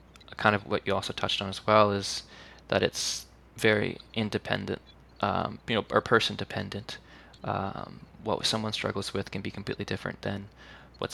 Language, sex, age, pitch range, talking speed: English, male, 20-39, 95-105 Hz, 165 wpm